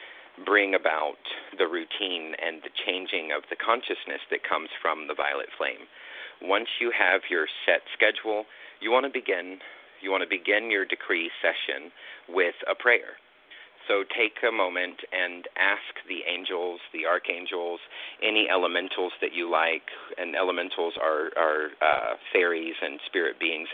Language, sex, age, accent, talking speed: English, male, 40-59, American, 150 wpm